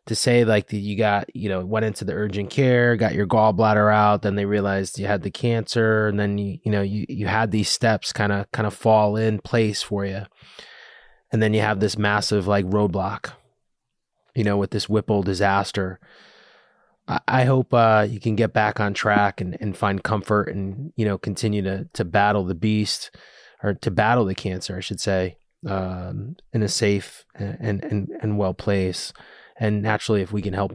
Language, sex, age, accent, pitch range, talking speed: English, male, 20-39, American, 100-115 Hz, 200 wpm